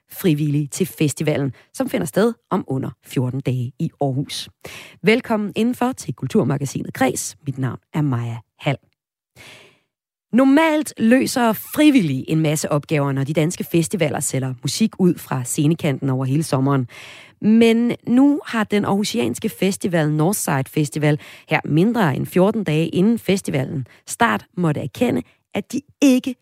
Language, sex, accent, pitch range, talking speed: Danish, female, native, 140-210 Hz, 140 wpm